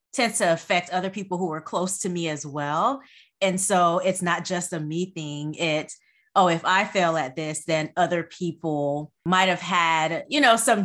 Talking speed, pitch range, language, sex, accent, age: 200 wpm, 165-210 Hz, English, female, American, 30-49